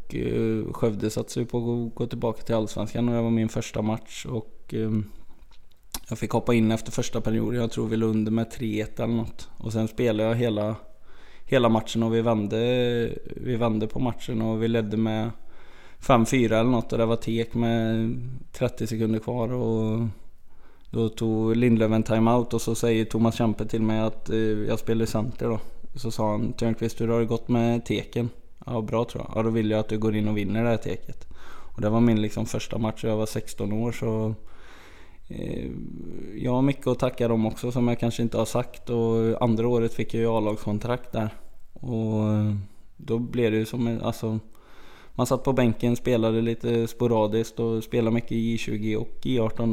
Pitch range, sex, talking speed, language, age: 110-115 Hz, male, 195 wpm, Swedish, 20-39